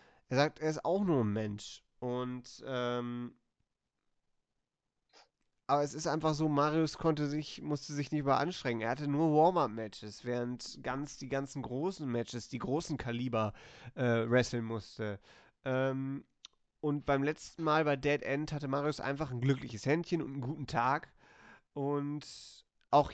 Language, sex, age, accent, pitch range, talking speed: German, male, 30-49, German, 120-150 Hz, 150 wpm